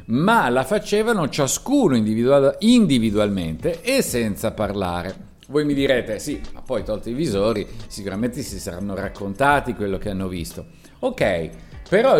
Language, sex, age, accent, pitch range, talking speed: Italian, male, 50-69, native, 105-155 Hz, 135 wpm